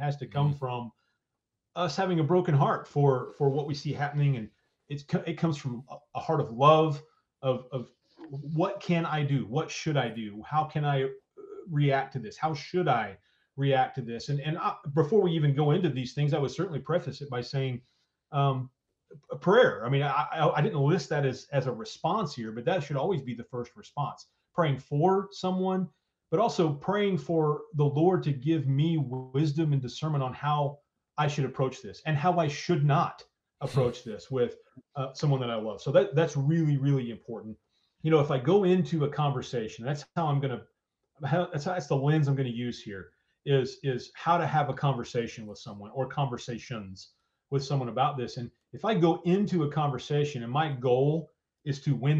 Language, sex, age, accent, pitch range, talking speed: English, male, 30-49, American, 130-160 Hz, 205 wpm